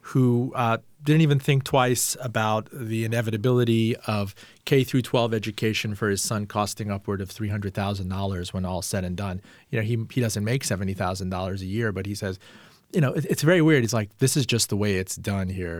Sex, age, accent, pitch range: male, 40-59, American, 105-155 Hz